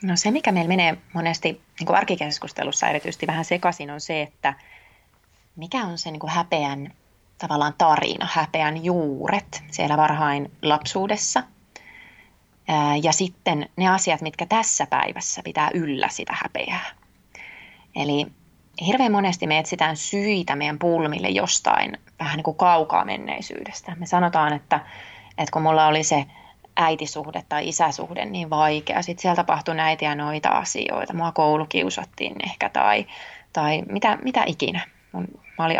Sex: female